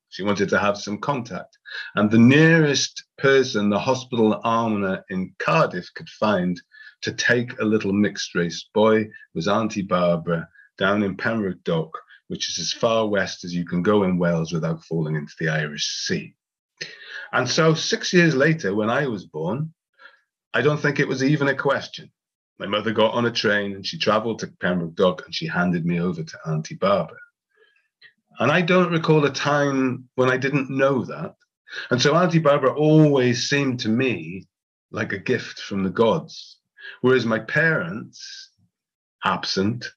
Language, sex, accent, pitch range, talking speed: English, male, British, 100-150 Hz, 170 wpm